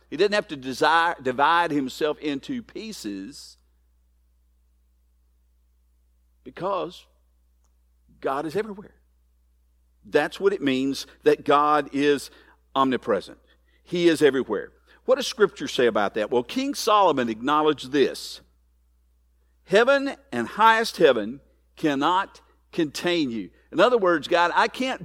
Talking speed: 115 wpm